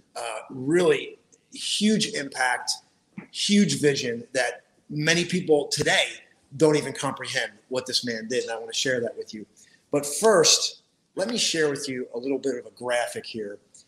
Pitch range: 130-185 Hz